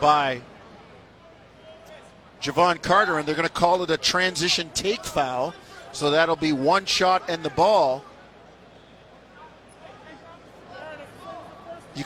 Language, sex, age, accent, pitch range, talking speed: English, male, 50-69, American, 160-195 Hz, 110 wpm